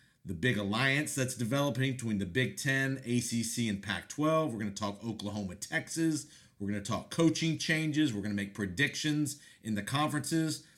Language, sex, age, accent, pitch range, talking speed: English, male, 40-59, American, 115-145 Hz, 175 wpm